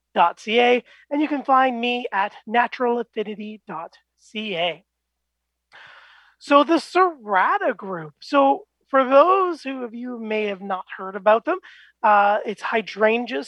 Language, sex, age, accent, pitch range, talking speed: English, male, 30-49, American, 195-255 Hz, 120 wpm